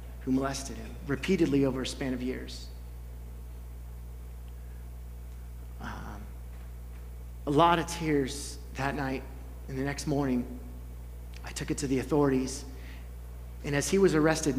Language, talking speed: English, 130 wpm